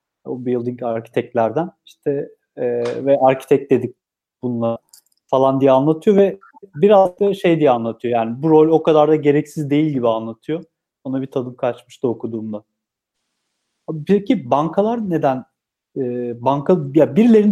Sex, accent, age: male, native, 40-59